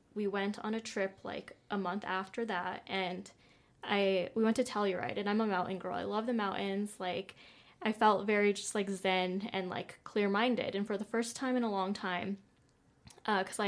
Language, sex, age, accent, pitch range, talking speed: English, female, 10-29, American, 190-210 Hz, 200 wpm